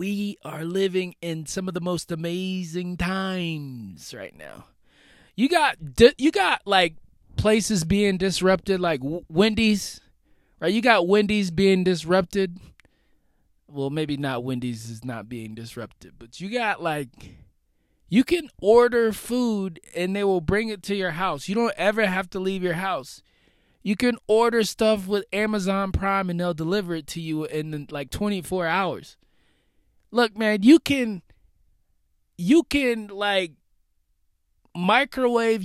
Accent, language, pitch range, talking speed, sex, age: American, English, 130-205 Hz, 145 wpm, male, 20-39